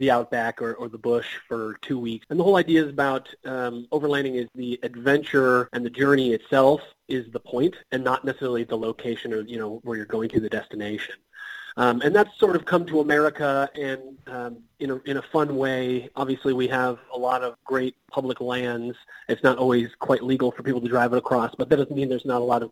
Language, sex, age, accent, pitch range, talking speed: English, male, 30-49, American, 115-135 Hz, 225 wpm